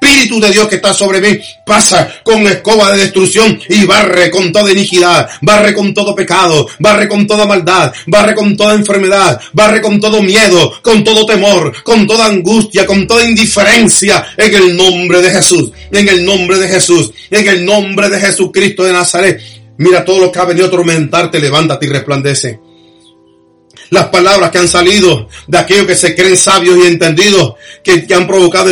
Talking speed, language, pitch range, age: 180 wpm, Spanish, 170-195 Hz, 40-59